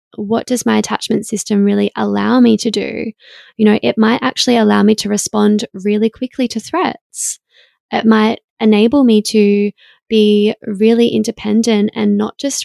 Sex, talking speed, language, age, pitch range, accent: female, 160 wpm, English, 20-39, 205-230 Hz, Australian